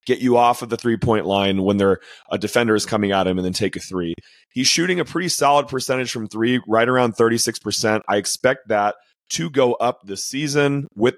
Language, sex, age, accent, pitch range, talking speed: English, male, 30-49, American, 105-135 Hz, 210 wpm